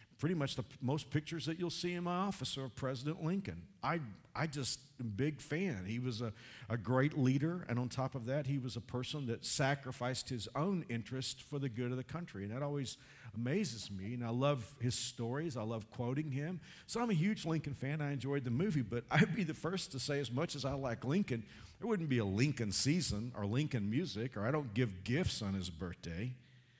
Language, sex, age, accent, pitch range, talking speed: English, male, 50-69, American, 120-160 Hz, 230 wpm